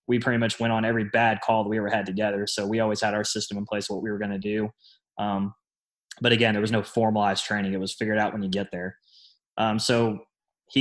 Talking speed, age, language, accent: 255 wpm, 20-39, English, American